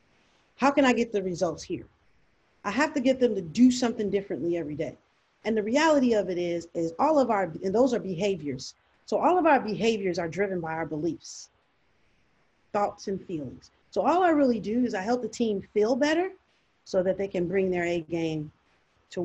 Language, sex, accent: English, female, American